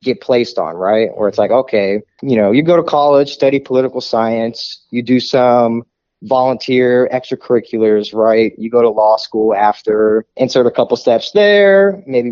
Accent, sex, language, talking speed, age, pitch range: American, male, English, 170 wpm, 20-39, 115-145 Hz